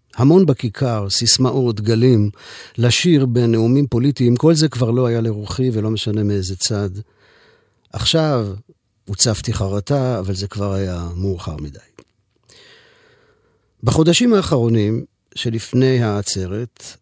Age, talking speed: 50-69, 105 wpm